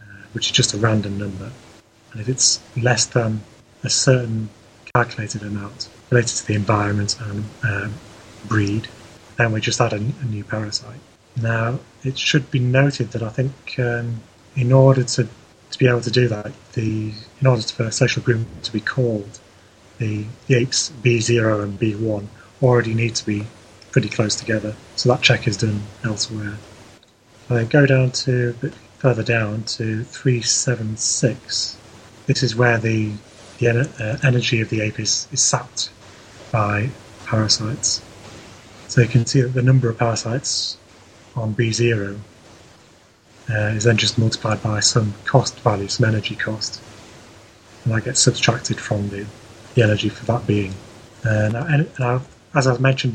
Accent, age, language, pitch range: British, 30-49, English, 105-125 Hz